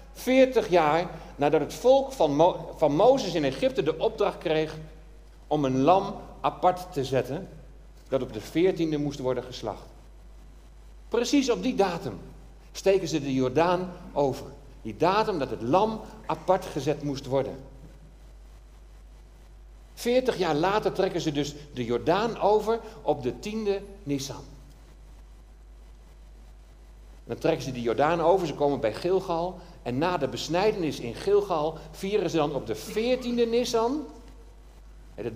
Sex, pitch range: male, 135-200 Hz